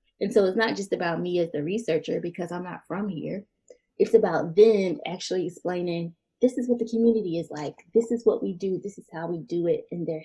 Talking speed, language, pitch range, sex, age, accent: 235 wpm, English, 175-225 Hz, female, 10-29, American